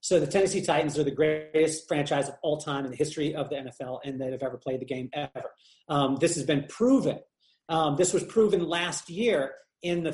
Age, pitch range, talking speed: 30-49, 150-180 Hz, 225 wpm